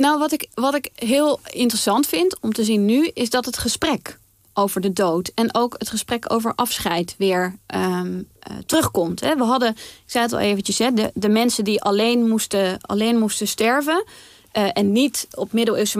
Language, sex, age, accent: Dutch, female, 20-39, Dutch